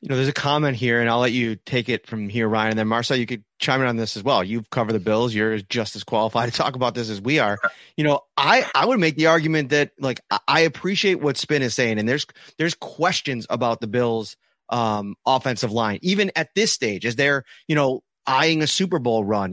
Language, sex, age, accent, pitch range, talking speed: English, male, 30-49, American, 120-165 Hz, 245 wpm